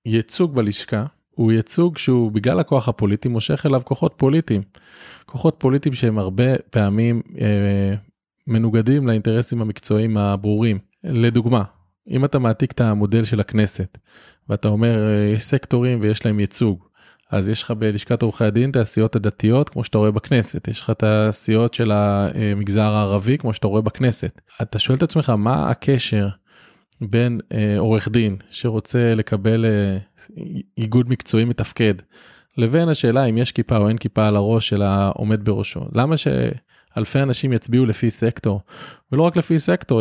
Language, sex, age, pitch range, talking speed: Hebrew, male, 20-39, 105-130 Hz, 150 wpm